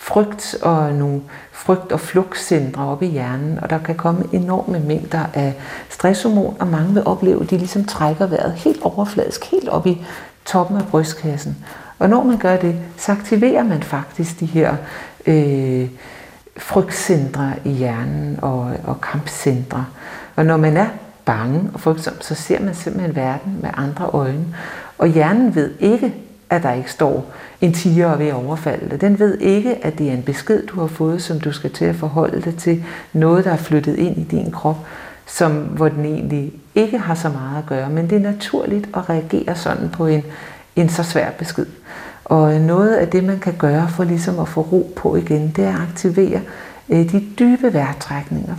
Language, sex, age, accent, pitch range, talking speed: Danish, female, 60-79, native, 150-195 Hz, 185 wpm